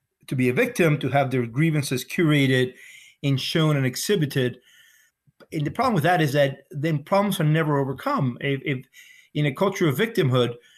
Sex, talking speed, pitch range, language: male, 180 wpm, 130-160 Hz, English